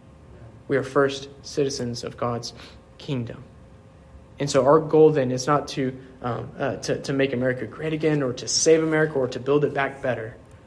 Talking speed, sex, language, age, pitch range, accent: 185 wpm, male, English, 20-39, 120-155 Hz, American